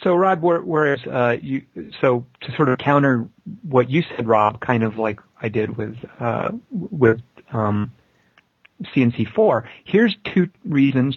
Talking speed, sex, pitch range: 155 wpm, male, 110-140 Hz